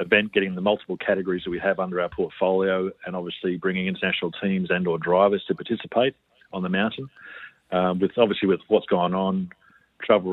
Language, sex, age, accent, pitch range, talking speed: English, male, 40-59, Australian, 90-100 Hz, 185 wpm